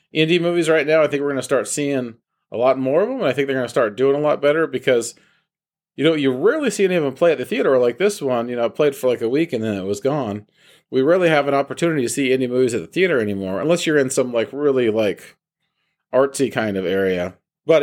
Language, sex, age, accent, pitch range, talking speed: English, male, 40-59, American, 125-160 Hz, 275 wpm